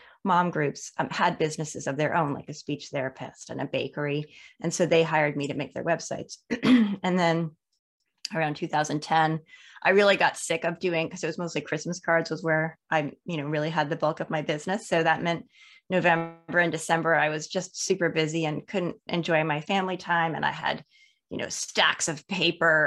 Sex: female